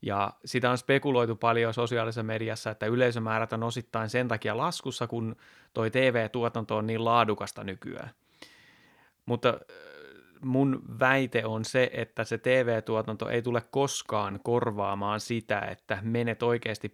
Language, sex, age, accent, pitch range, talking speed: Finnish, male, 30-49, native, 110-125 Hz, 130 wpm